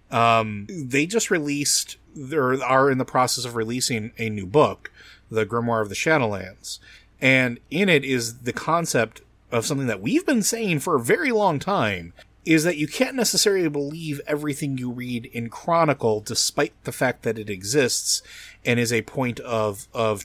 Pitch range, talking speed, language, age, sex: 110-150 Hz, 175 wpm, English, 30-49, male